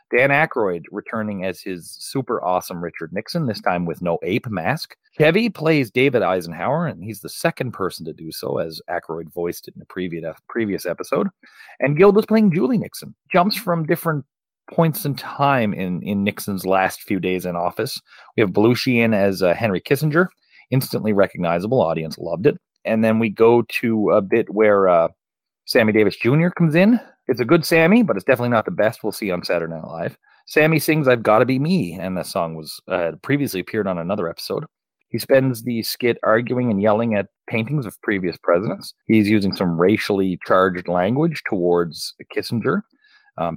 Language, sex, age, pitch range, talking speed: English, male, 30-49, 90-145 Hz, 185 wpm